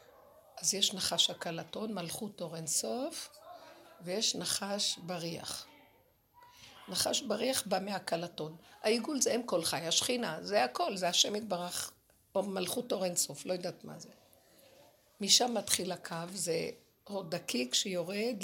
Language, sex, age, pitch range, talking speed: Hebrew, female, 50-69, 175-260 Hz, 125 wpm